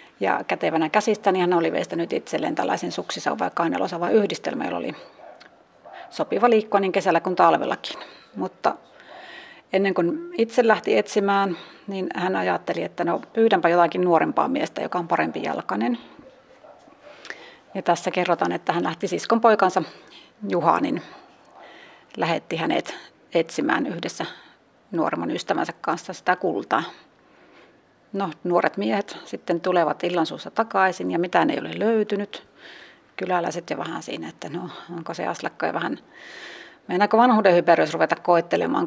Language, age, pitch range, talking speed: Finnish, 30-49, 175-215 Hz, 135 wpm